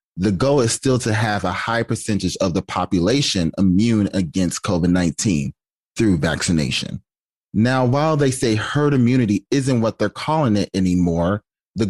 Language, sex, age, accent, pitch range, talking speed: English, male, 30-49, American, 95-125 Hz, 150 wpm